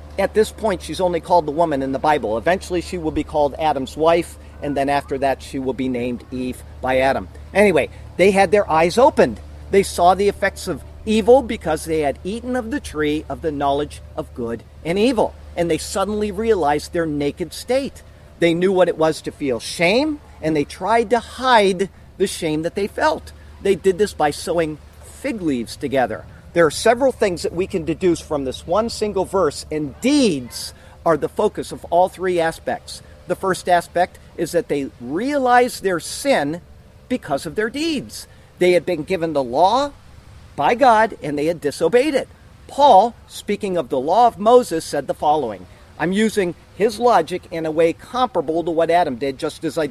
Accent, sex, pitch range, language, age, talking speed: American, male, 150-215 Hz, English, 50-69, 195 wpm